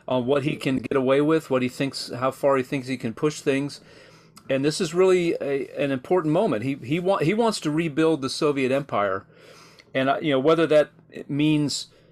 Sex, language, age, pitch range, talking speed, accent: male, English, 40-59, 125-155 Hz, 210 wpm, American